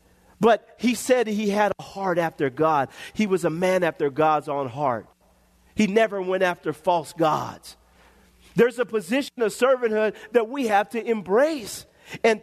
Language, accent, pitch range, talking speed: English, American, 155-260 Hz, 165 wpm